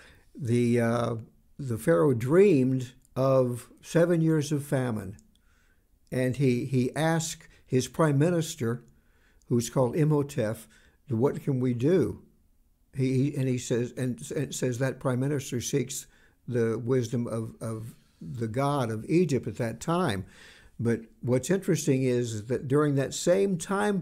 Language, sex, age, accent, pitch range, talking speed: English, male, 60-79, American, 120-155 Hz, 135 wpm